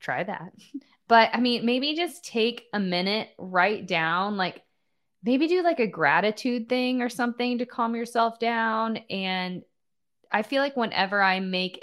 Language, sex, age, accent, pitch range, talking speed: English, female, 20-39, American, 165-210 Hz, 160 wpm